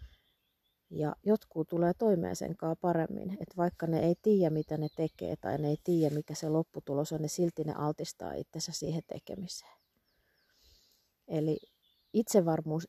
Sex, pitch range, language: female, 150-180 Hz, Finnish